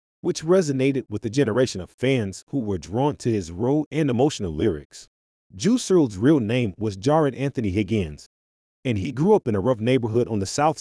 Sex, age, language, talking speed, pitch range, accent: male, 30-49, English, 195 wpm, 95-140 Hz, American